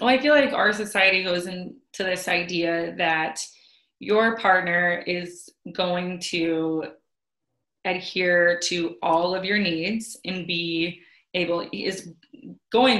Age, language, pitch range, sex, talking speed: 20-39, English, 170-200 Hz, female, 125 wpm